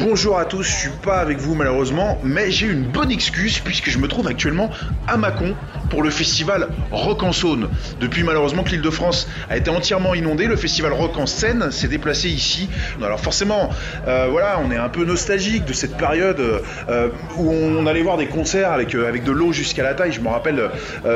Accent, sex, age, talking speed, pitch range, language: French, male, 20-39, 220 wpm, 140-185 Hz, French